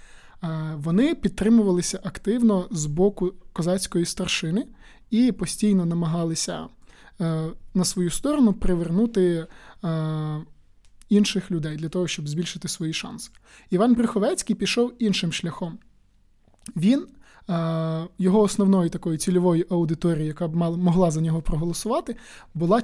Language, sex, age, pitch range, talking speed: Ukrainian, male, 20-39, 165-195 Hz, 110 wpm